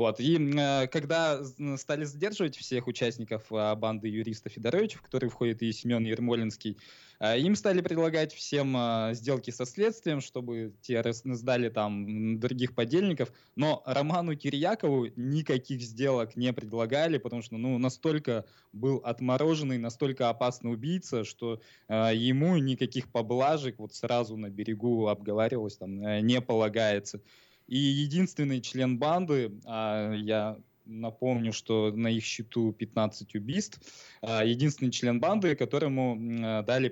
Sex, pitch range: male, 115-140 Hz